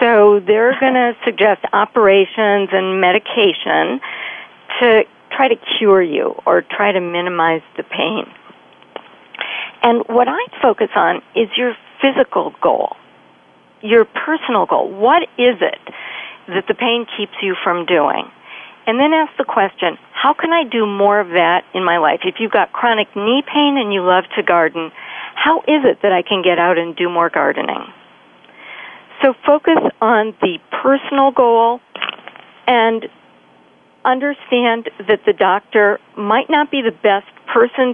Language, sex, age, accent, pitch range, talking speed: English, female, 50-69, American, 185-245 Hz, 150 wpm